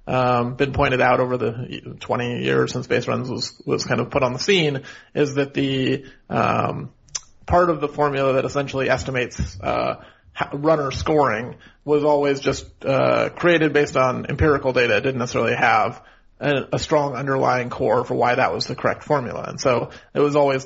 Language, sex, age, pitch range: English, male, 30-49, 130-150 Hz